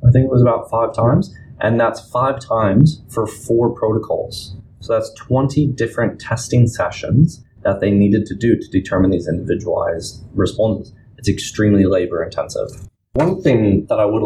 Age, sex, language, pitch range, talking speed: 20-39, male, English, 95-120 Hz, 160 wpm